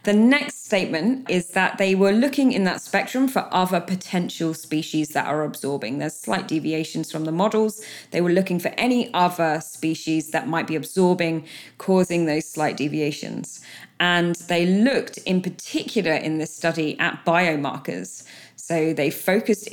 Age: 20-39